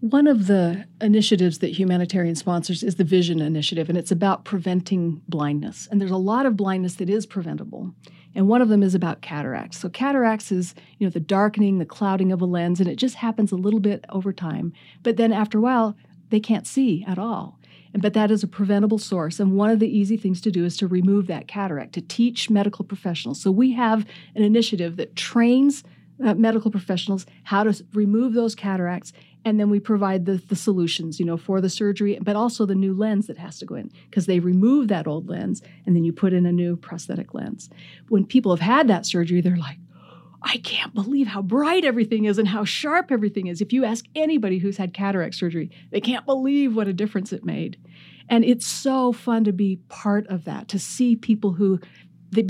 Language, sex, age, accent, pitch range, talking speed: English, female, 40-59, American, 180-220 Hz, 215 wpm